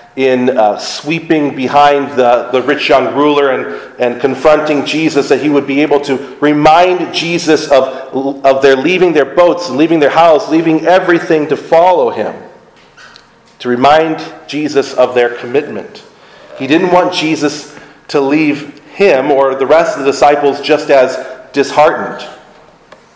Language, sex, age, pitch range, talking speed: English, male, 40-59, 125-155 Hz, 150 wpm